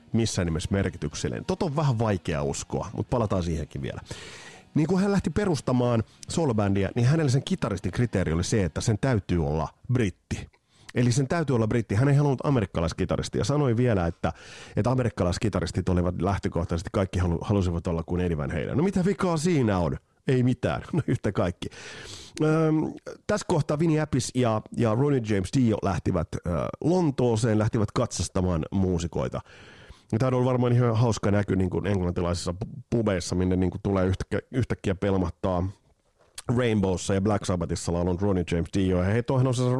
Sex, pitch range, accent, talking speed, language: male, 90-125 Hz, native, 160 wpm, Finnish